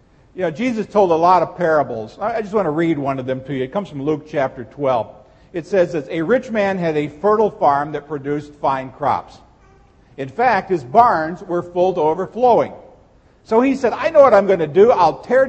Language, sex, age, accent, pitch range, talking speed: English, male, 50-69, American, 150-215 Hz, 225 wpm